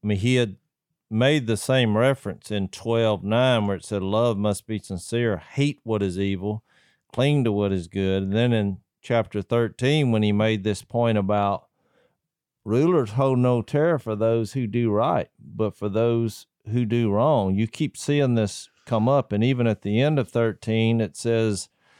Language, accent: English, American